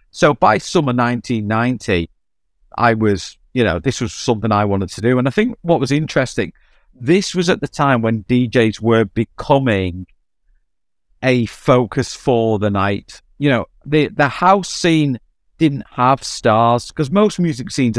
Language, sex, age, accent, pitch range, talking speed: English, male, 50-69, British, 100-135 Hz, 160 wpm